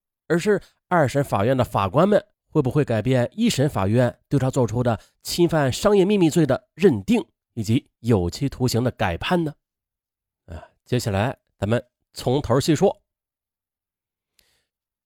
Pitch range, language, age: 110-175 Hz, Chinese, 30-49